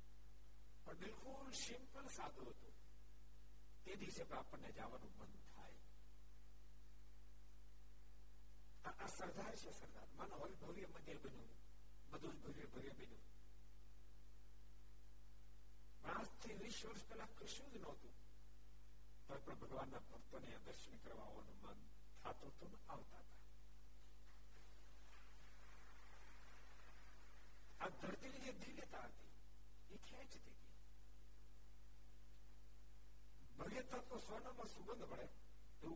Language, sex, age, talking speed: Gujarati, male, 60-79, 55 wpm